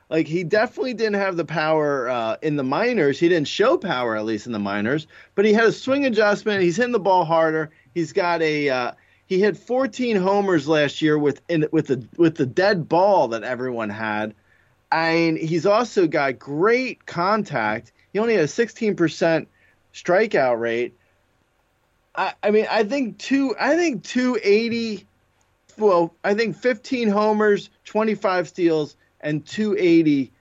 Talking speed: 170 wpm